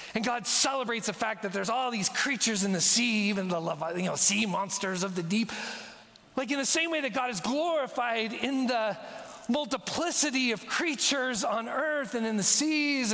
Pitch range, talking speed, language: 225-285 Hz, 185 wpm, English